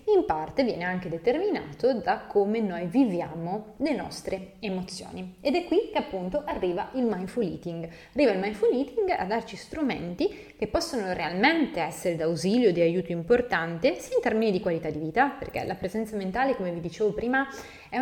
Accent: native